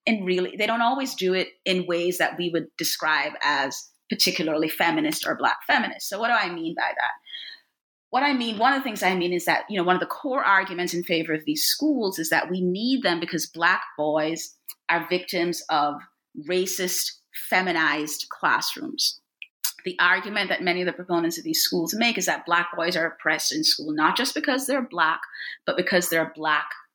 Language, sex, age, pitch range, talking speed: English, female, 30-49, 165-255 Hz, 205 wpm